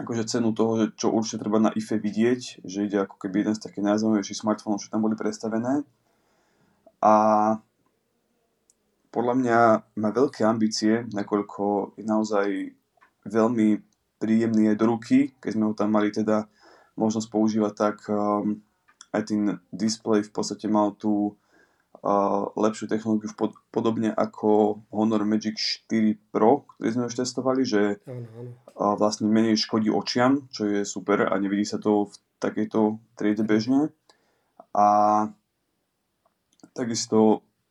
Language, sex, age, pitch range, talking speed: Slovak, male, 20-39, 105-110 Hz, 135 wpm